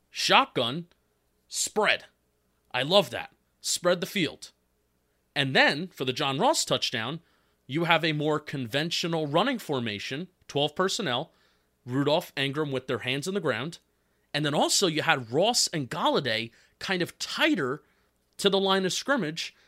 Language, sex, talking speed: English, male, 145 wpm